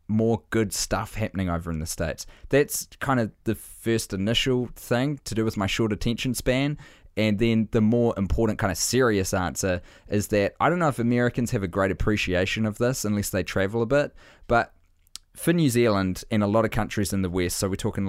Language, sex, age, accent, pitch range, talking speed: English, male, 20-39, Australian, 90-110 Hz, 210 wpm